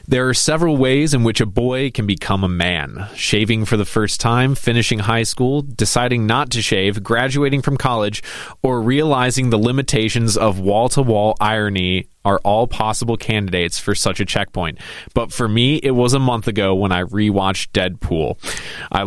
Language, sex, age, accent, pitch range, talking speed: English, male, 20-39, American, 100-125 Hz, 175 wpm